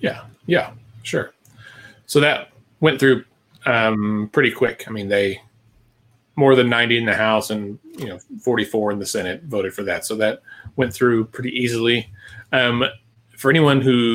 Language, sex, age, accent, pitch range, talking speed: English, male, 30-49, American, 110-135 Hz, 170 wpm